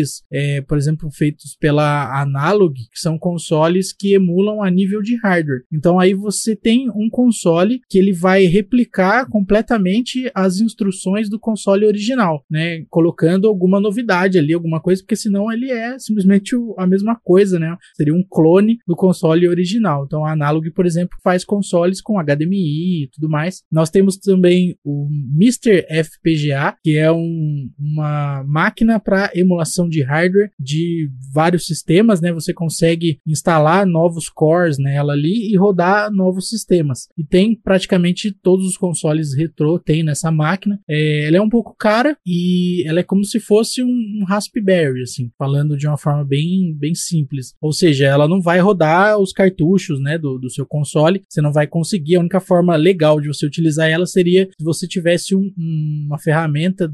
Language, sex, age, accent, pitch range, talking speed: Portuguese, male, 20-39, Brazilian, 155-200 Hz, 170 wpm